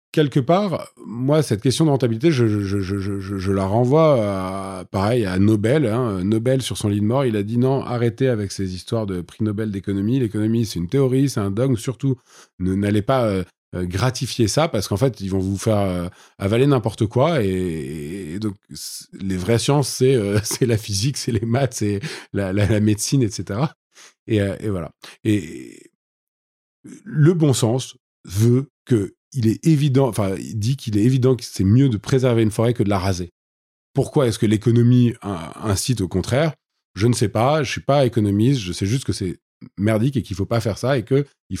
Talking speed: 210 wpm